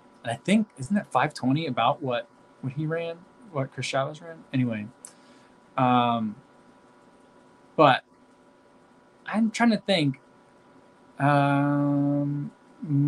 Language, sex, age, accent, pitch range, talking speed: English, male, 20-39, American, 125-155 Hz, 100 wpm